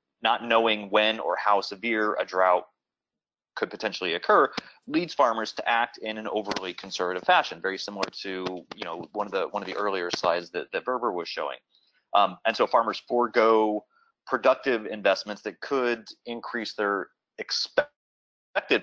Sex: male